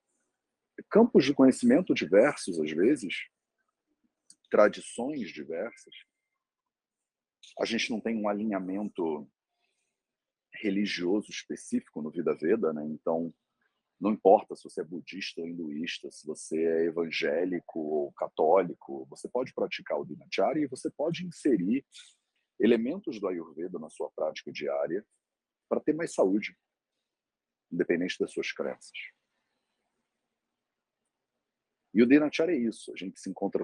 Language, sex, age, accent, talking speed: English, male, 40-59, Brazilian, 120 wpm